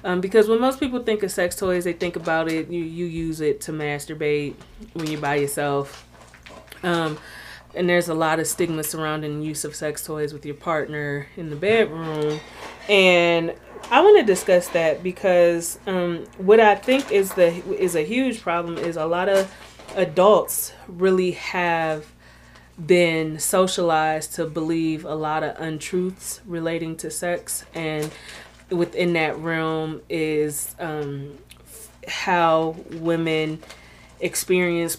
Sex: female